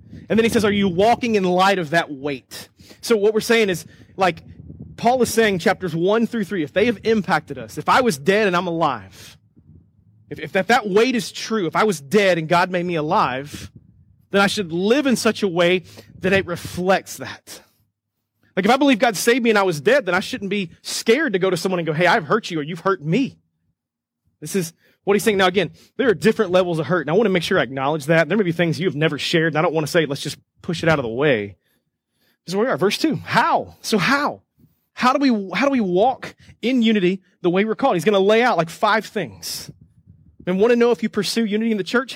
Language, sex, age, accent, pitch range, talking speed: English, male, 30-49, American, 160-215 Hz, 255 wpm